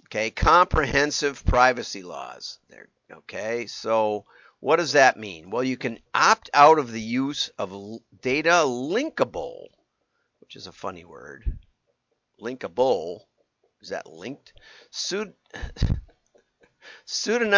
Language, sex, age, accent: English, male, 50-69, American